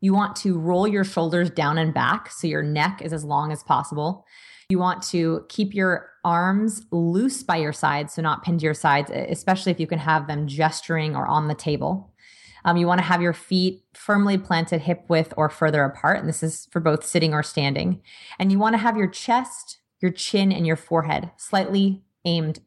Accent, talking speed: American, 210 wpm